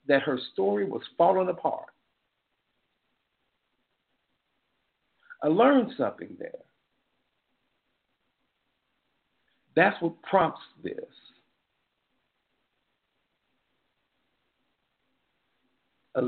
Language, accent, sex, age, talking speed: English, American, male, 50-69, 55 wpm